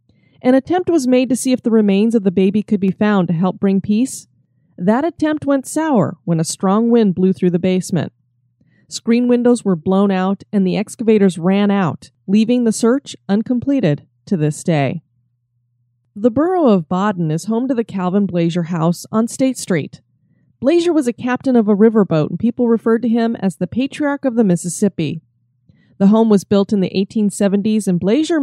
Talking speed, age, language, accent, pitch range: 190 wpm, 30-49, English, American, 180-245 Hz